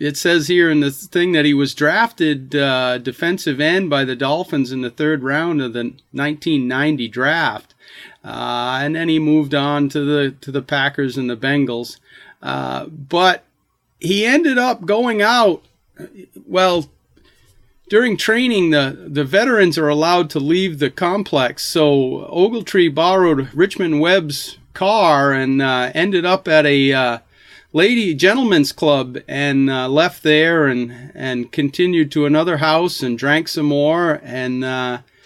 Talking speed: 150 wpm